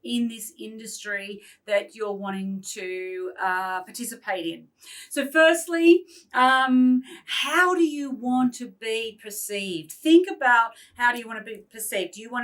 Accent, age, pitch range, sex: Australian, 40-59, 200-260 Hz, female